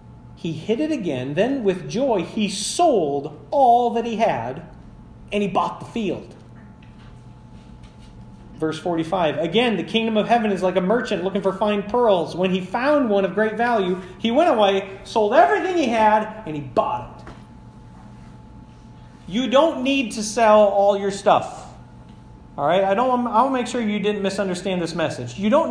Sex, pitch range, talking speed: male, 170-240 Hz, 170 wpm